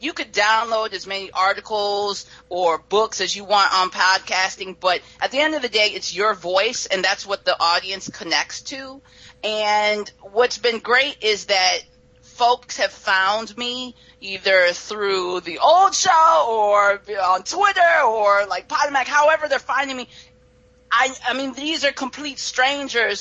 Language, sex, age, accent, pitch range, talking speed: English, female, 30-49, American, 195-260 Hz, 160 wpm